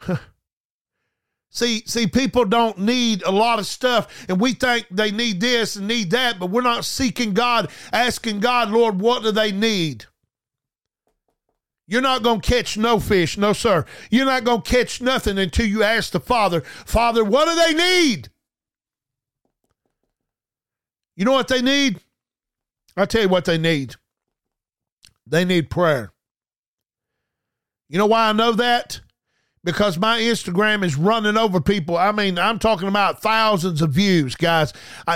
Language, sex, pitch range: English, male, 180-235 Hz